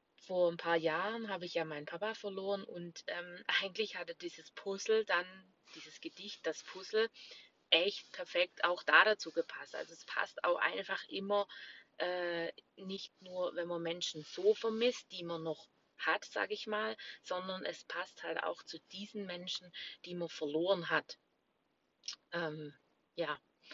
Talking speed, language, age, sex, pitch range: 155 wpm, German, 30-49, female, 170-215 Hz